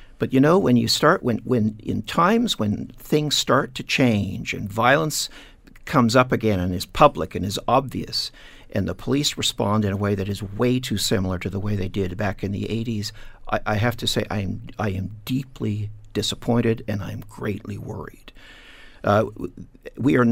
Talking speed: 200 wpm